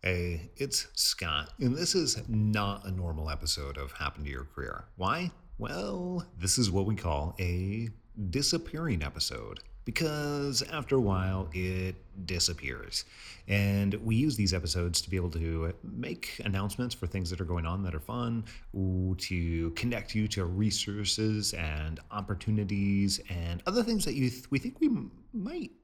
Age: 30-49